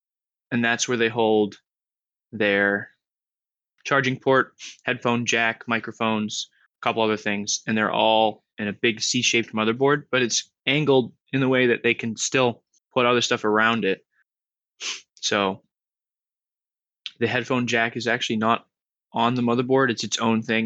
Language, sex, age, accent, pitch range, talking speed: English, male, 20-39, American, 105-120 Hz, 150 wpm